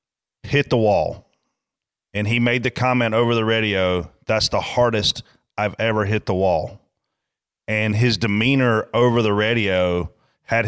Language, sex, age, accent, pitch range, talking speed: English, male, 30-49, American, 95-115 Hz, 145 wpm